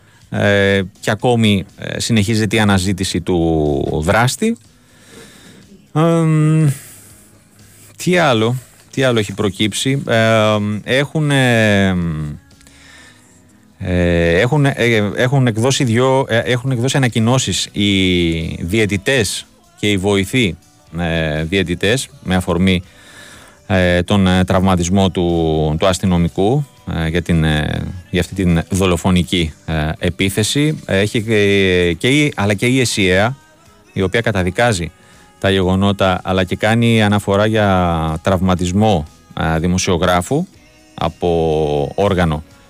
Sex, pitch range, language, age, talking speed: male, 90-120 Hz, Greek, 30-49, 105 wpm